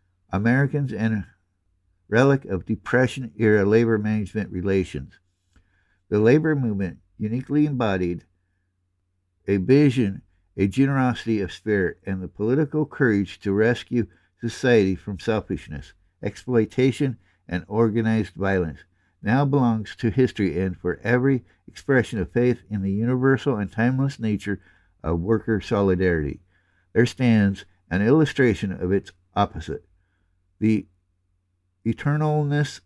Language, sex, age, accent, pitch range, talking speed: English, male, 60-79, American, 90-120 Hz, 110 wpm